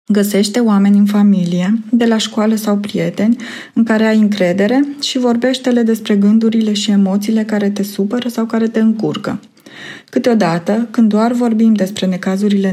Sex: female